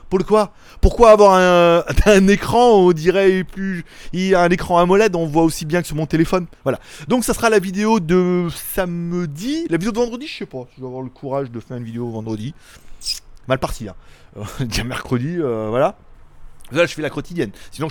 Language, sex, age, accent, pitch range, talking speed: French, male, 30-49, French, 145-210 Hz, 210 wpm